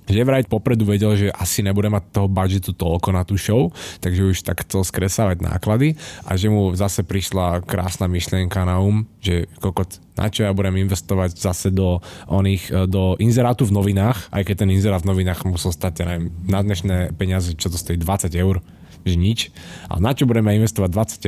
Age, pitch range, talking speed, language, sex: 20-39, 90-105 Hz, 190 wpm, Slovak, male